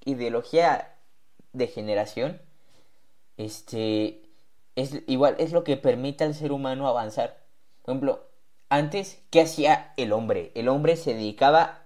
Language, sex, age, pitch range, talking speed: Spanish, male, 20-39, 140-195 Hz, 125 wpm